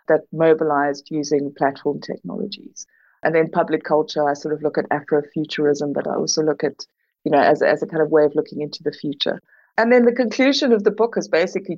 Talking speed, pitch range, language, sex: 215 wpm, 150-180 Hz, English, female